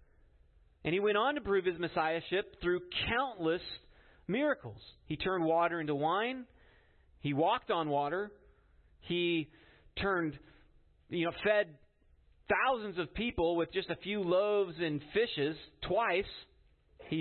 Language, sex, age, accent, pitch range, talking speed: English, male, 40-59, American, 115-180 Hz, 130 wpm